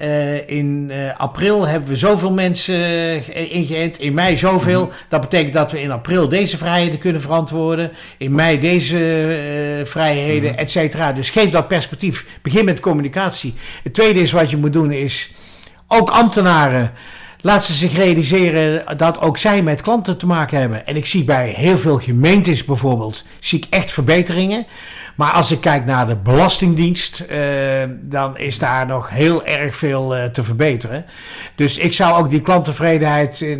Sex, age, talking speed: male, 60-79, 160 wpm